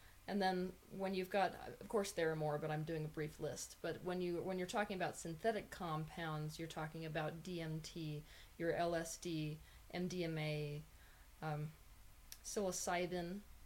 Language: English